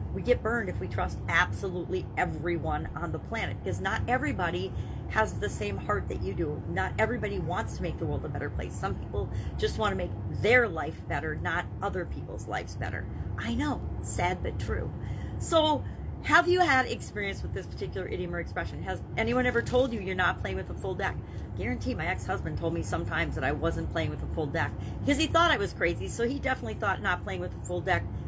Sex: female